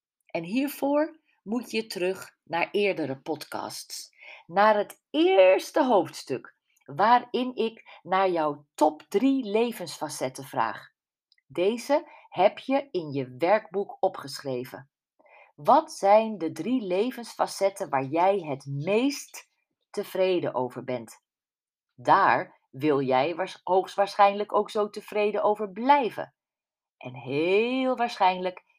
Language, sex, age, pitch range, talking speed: Dutch, female, 40-59, 155-230 Hz, 105 wpm